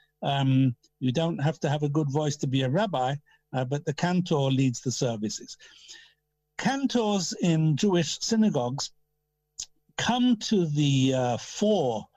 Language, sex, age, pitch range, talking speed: English, male, 60-79, 135-175 Hz, 145 wpm